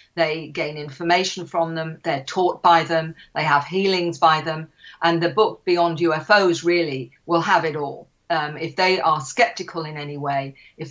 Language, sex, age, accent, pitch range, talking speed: English, female, 50-69, British, 155-180 Hz, 180 wpm